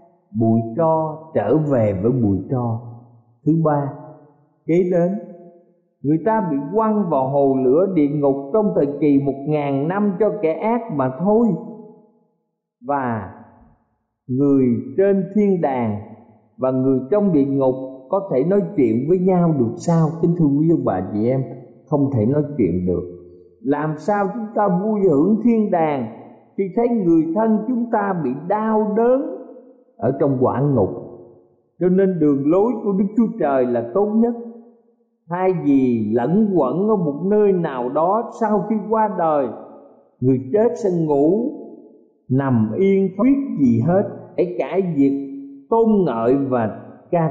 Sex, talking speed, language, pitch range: male, 155 wpm, Vietnamese, 125-205 Hz